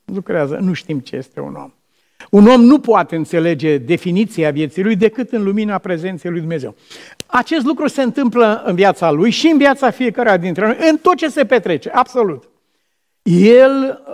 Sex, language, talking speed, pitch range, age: male, Romanian, 175 wpm, 145-200 Hz, 50-69